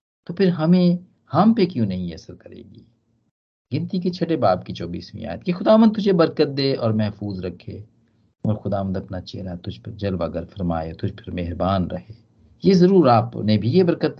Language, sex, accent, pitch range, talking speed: Hindi, male, native, 95-130 Hz, 180 wpm